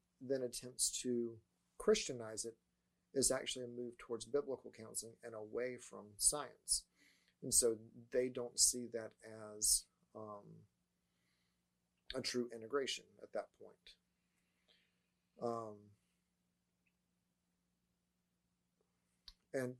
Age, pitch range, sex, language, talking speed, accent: 40-59, 110-125 Hz, male, English, 95 wpm, American